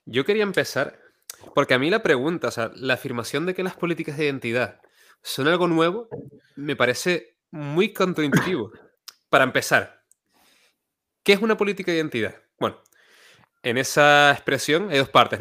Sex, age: male, 20-39